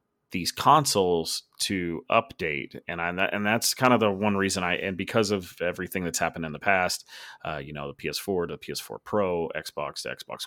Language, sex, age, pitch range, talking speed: English, male, 30-49, 85-115 Hz, 200 wpm